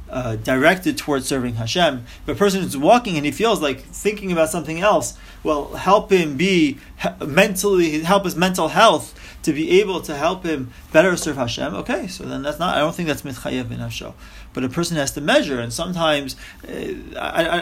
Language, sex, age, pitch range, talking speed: English, male, 30-49, 140-185 Hz, 200 wpm